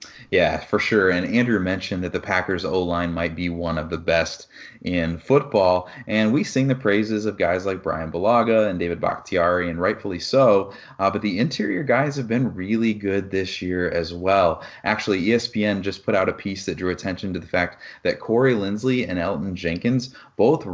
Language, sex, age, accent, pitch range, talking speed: English, male, 30-49, American, 85-105 Hz, 195 wpm